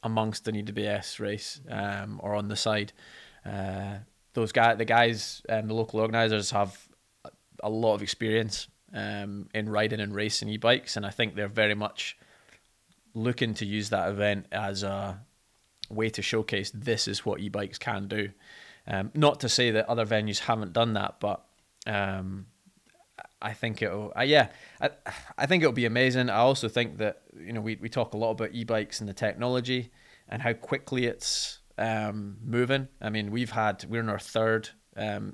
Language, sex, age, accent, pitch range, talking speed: English, male, 20-39, British, 105-115 Hz, 185 wpm